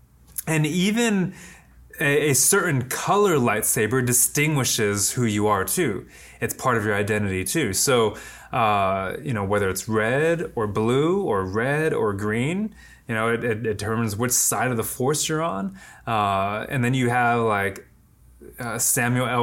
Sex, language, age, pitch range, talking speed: male, English, 20-39, 105-135 Hz, 160 wpm